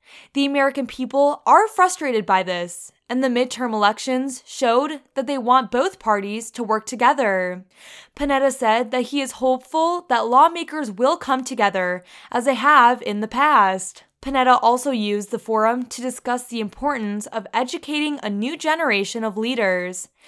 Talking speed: 155 wpm